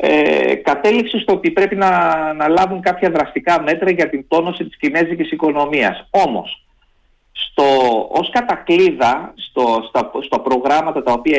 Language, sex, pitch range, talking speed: Greek, male, 140-200 Hz, 140 wpm